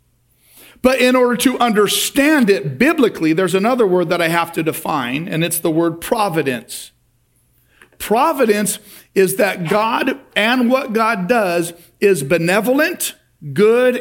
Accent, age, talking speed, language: American, 50-69, 135 wpm, English